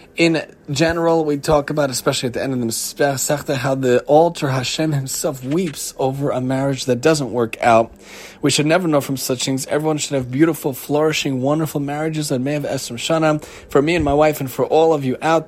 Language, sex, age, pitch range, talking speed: English, male, 30-49, 135-165 Hz, 210 wpm